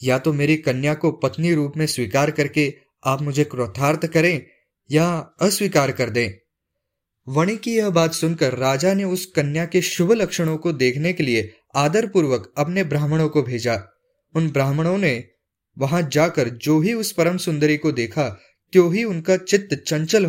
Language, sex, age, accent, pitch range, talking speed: Hindi, male, 20-39, native, 135-185 Hz, 165 wpm